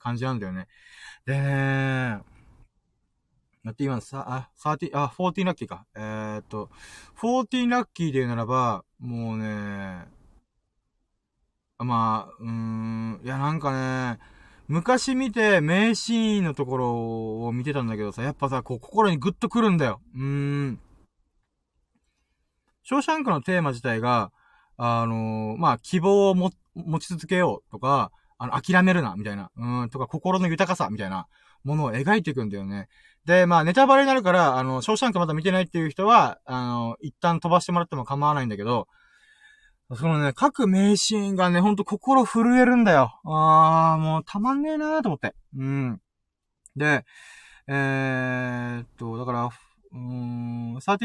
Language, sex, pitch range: Japanese, male, 120-185 Hz